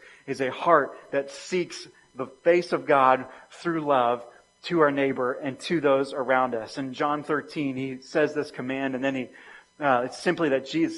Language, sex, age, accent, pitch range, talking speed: English, male, 30-49, American, 135-170 Hz, 185 wpm